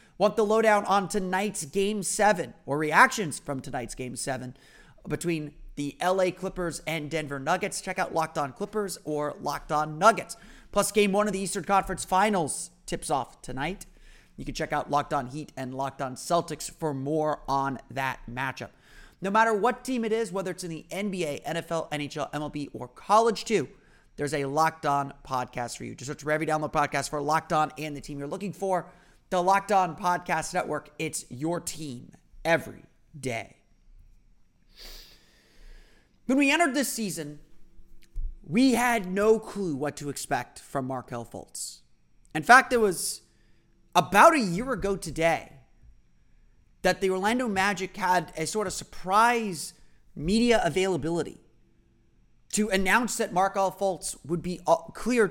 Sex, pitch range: male, 145-200 Hz